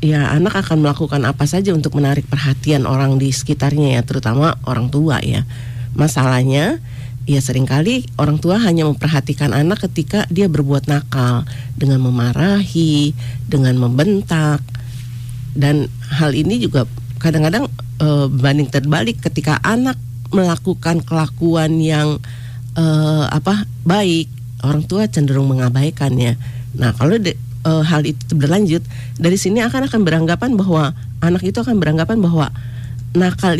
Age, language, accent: 40-59, Indonesian, native